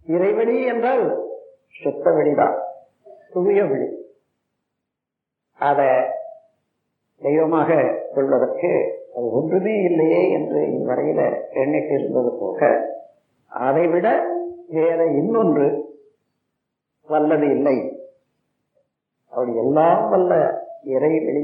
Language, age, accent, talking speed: Tamil, 50-69, native, 60 wpm